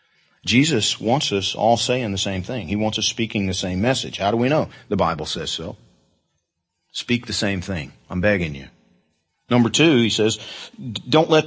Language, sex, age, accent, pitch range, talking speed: English, male, 50-69, American, 105-145 Hz, 190 wpm